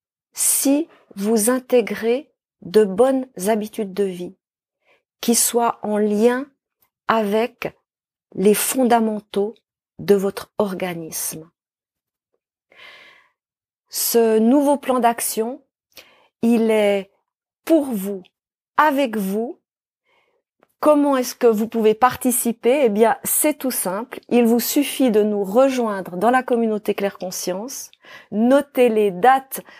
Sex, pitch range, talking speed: female, 210-265 Hz, 105 wpm